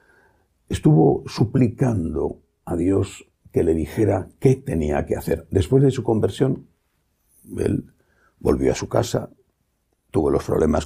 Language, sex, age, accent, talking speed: English, male, 60-79, Spanish, 125 wpm